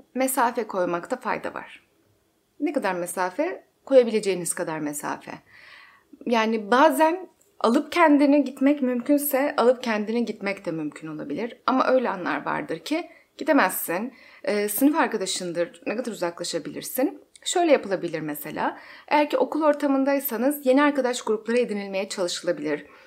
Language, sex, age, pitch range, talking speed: Turkish, female, 30-49, 195-270 Hz, 115 wpm